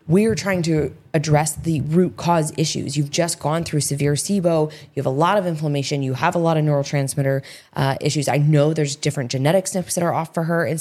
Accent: American